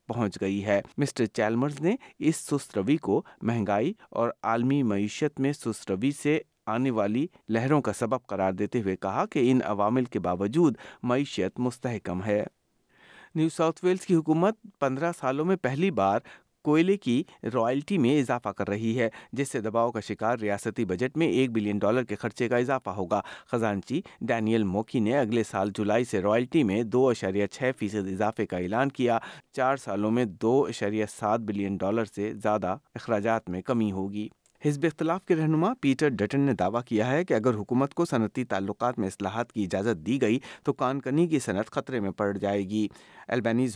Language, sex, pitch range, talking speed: Urdu, male, 105-135 Hz, 175 wpm